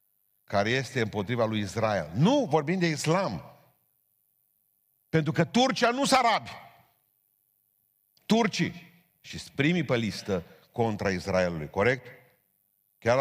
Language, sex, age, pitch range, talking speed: Romanian, male, 50-69, 105-160 Hz, 100 wpm